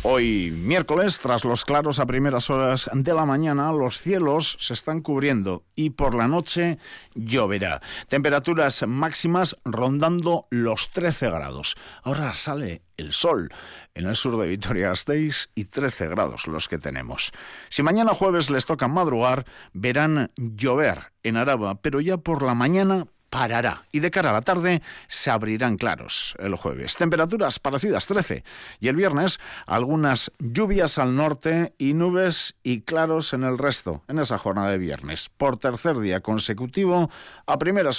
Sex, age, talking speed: male, 50-69, 155 wpm